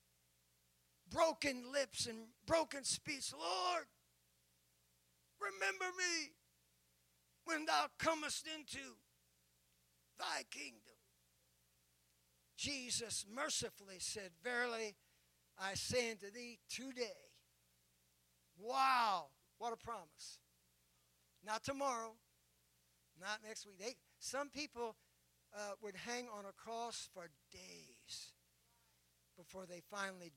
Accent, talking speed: American, 90 wpm